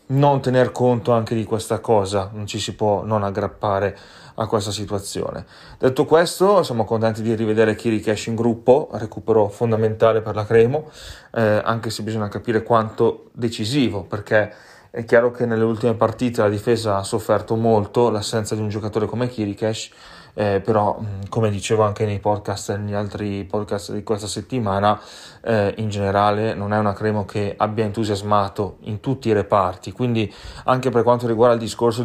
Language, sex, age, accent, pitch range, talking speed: Italian, male, 20-39, native, 100-115 Hz, 170 wpm